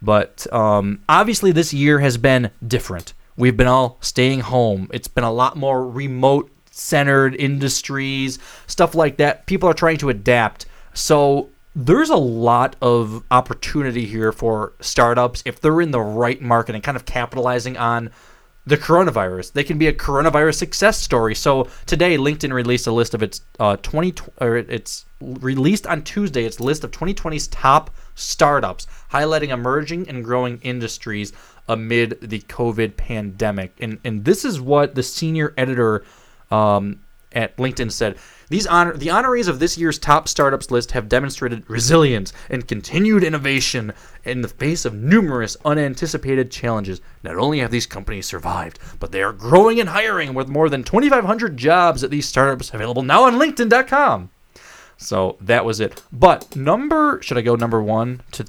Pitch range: 115-155 Hz